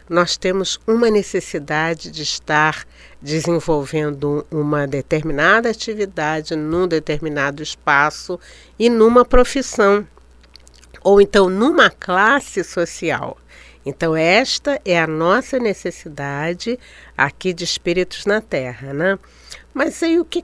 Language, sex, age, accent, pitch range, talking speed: Portuguese, female, 50-69, Brazilian, 155-210 Hz, 110 wpm